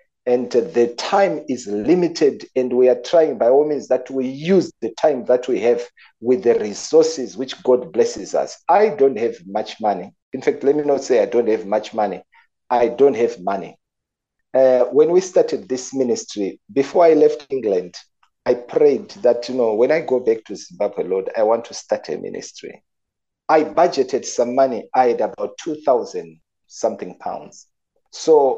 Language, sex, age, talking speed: English, male, 50-69, 180 wpm